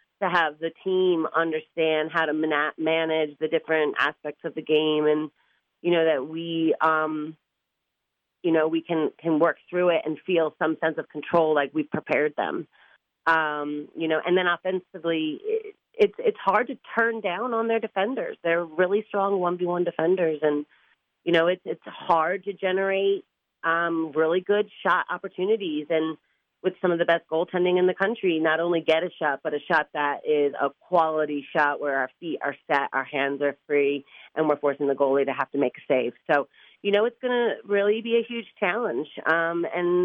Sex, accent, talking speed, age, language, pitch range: female, American, 190 wpm, 30-49, English, 150-180 Hz